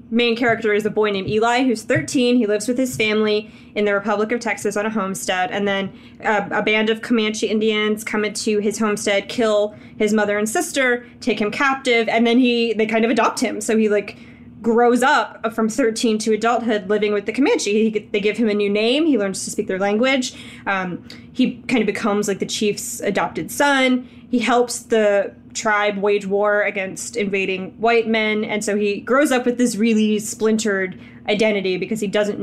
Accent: American